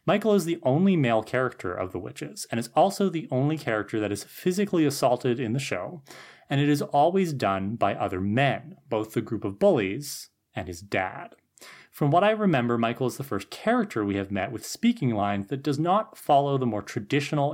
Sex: male